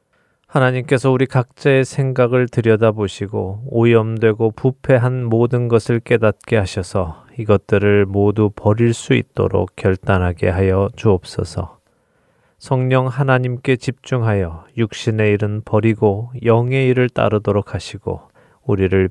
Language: Korean